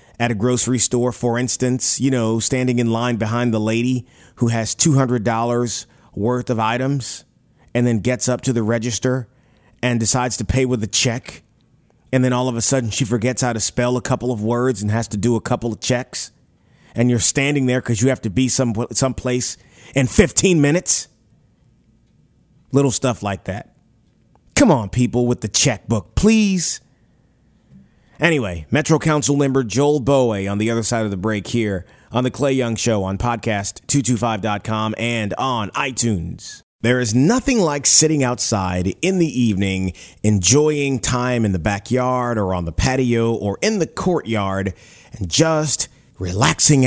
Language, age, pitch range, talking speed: English, 30-49, 110-130 Hz, 170 wpm